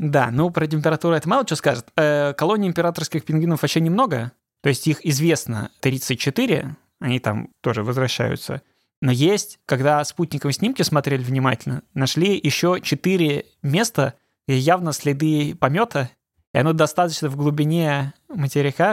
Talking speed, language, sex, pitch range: 140 wpm, Russian, male, 130-160 Hz